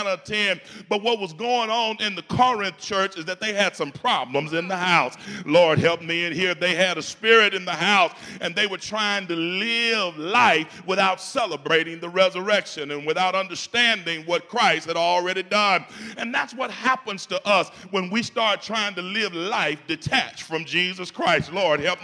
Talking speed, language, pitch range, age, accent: 190 wpm, English, 180-225 Hz, 40-59, American